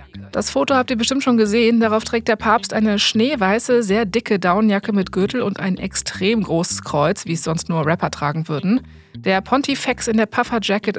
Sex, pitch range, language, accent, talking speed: female, 175-235 Hz, German, German, 190 wpm